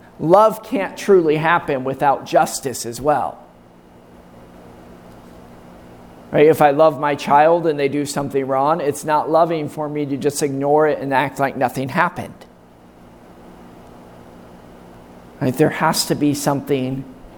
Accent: American